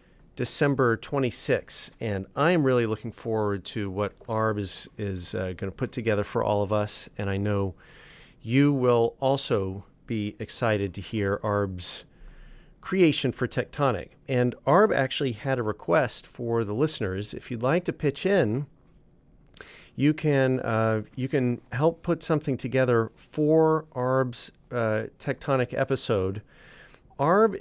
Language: English